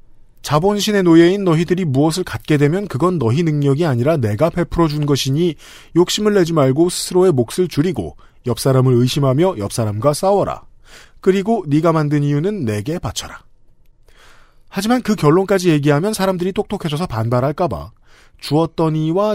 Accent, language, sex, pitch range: native, Korean, male, 135-180 Hz